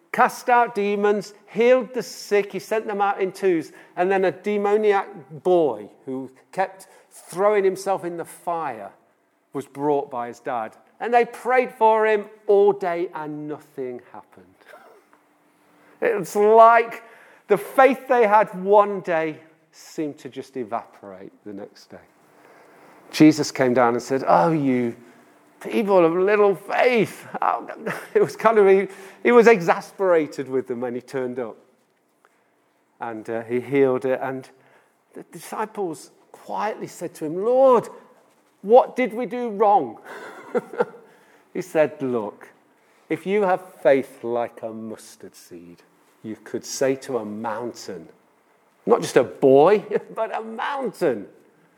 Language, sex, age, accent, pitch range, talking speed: English, male, 50-69, British, 135-210 Hz, 140 wpm